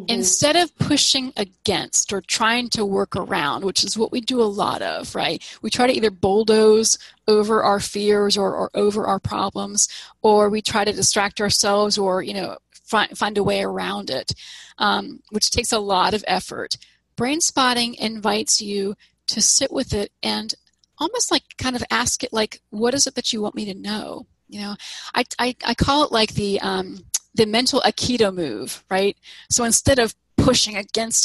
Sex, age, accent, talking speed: female, 30-49, American, 190 wpm